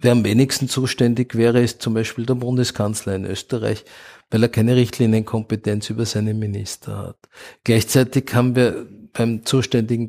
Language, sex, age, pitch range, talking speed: German, male, 50-69, 110-125 Hz, 150 wpm